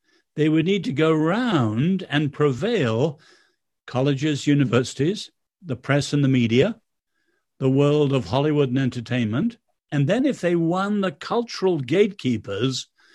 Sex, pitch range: male, 125-175 Hz